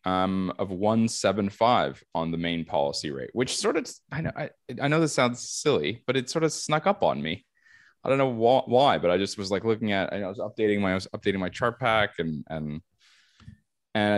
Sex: male